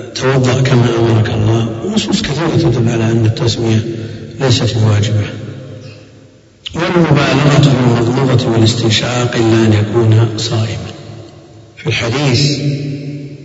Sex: male